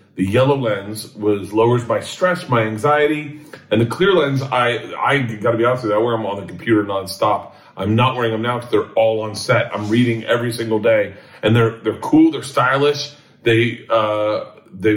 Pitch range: 110-135 Hz